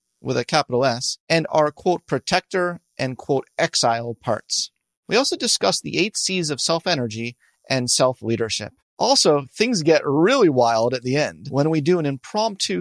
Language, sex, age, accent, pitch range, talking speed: English, male, 30-49, American, 125-180 Hz, 165 wpm